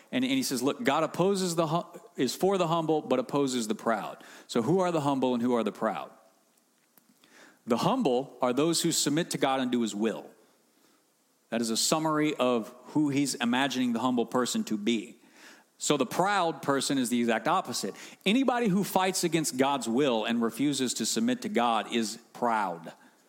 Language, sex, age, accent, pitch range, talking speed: English, male, 40-59, American, 120-165 Hz, 185 wpm